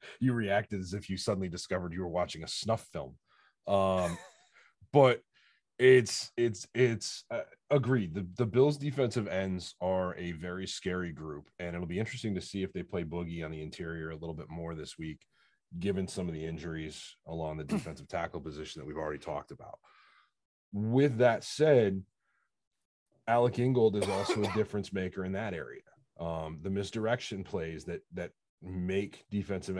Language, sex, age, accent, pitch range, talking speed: English, male, 30-49, American, 85-110 Hz, 170 wpm